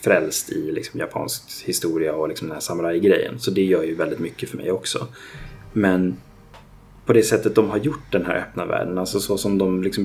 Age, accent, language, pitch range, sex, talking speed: 30-49, native, Swedish, 90-110 Hz, male, 215 wpm